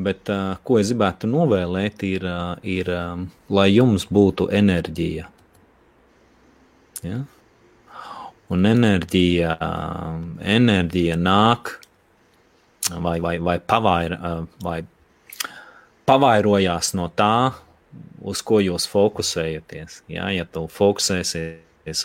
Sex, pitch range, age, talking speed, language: male, 85-105 Hz, 30-49, 100 wpm, English